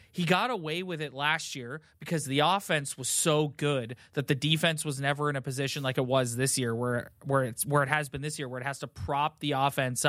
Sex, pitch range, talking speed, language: male, 135-165 Hz, 250 wpm, English